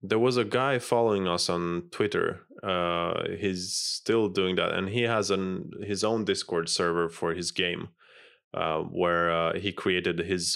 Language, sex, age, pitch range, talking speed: English, male, 20-39, 85-110 Hz, 170 wpm